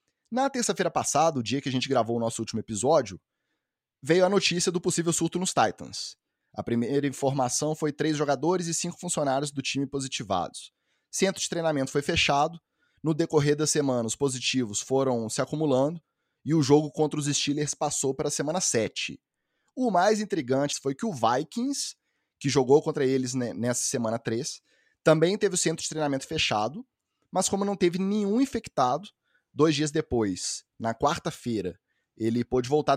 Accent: Brazilian